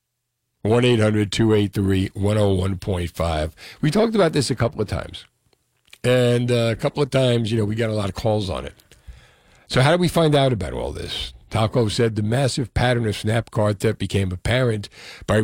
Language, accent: English, American